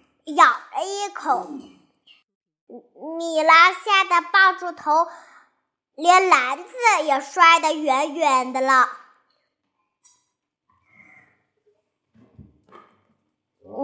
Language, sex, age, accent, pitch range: Chinese, male, 20-39, native, 280-370 Hz